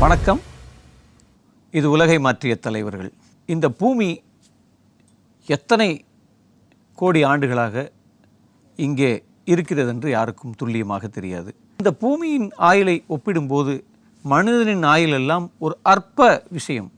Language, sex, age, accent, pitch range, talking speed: Tamil, male, 50-69, native, 130-200 Hz, 90 wpm